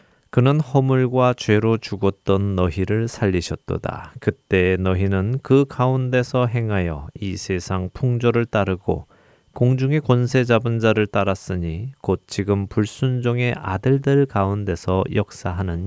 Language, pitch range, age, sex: Korean, 95-125 Hz, 20-39, male